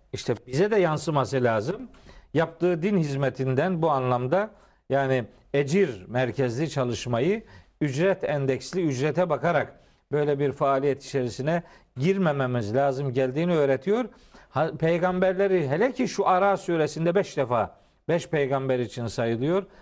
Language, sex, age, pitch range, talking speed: Turkish, male, 50-69, 135-185 Hz, 115 wpm